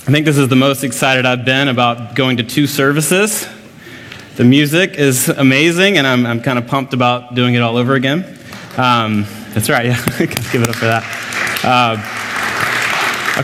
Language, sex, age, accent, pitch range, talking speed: English, male, 30-49, American, 120-160 Hz, 185 wpm